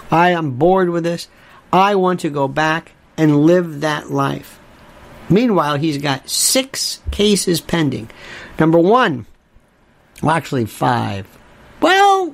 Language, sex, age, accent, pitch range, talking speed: English, male, 50-69, American, 135-180 Hz, 125 wpm